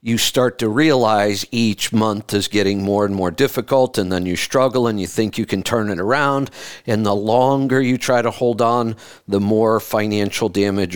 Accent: American